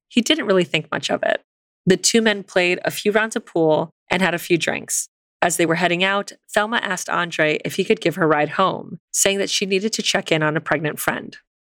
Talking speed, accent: 250 wpm, American